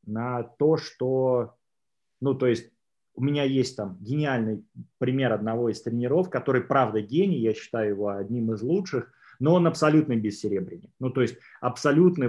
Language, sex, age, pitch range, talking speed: Russian, male, 30-49, 115-145 Hz, 160 wpm